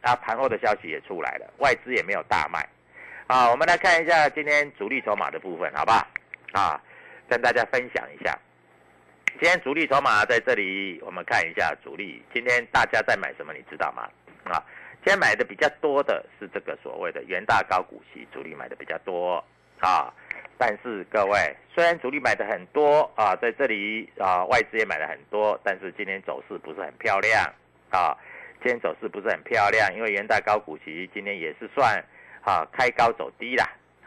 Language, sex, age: Chinese, male, 50-69